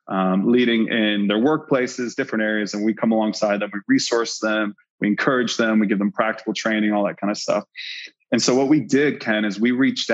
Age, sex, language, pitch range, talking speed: 20-39, male, English, 105-125 Hz, 220 wpm